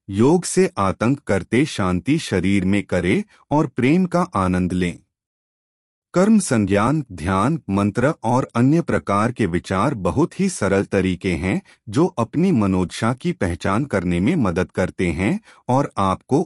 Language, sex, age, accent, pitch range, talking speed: Hindi, male, 30-49, native, 95-145 Hz, 140 wpm